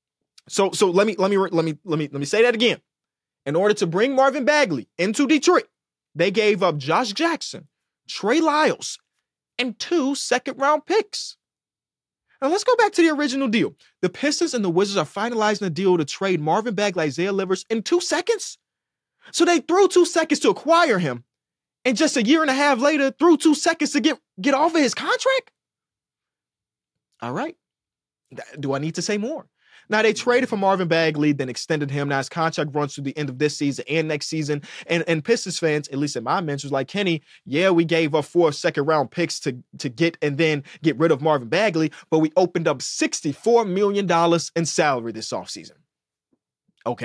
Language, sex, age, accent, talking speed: English, male, 20-39, American, 200 wpm